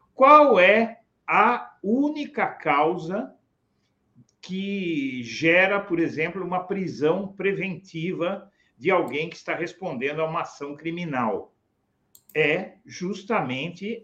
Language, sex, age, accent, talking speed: Portuguese, male, 60-79, Brazilian, 100 wpm